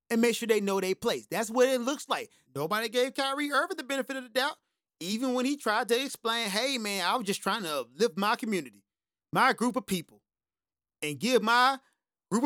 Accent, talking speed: American, 215 wpm